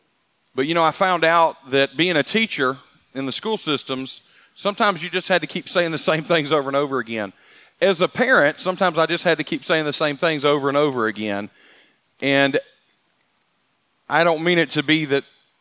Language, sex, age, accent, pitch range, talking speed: English, male, 40-59, American, 130-155 Hz, 205 wpm